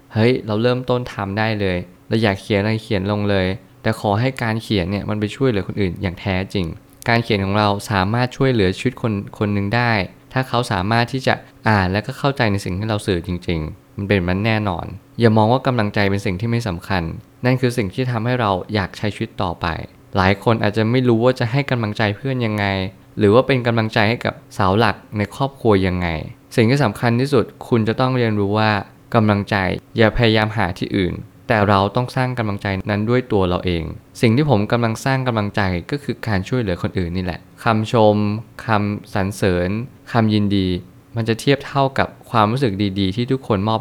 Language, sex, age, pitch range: Thai, male, 20-39, 100-120 Hz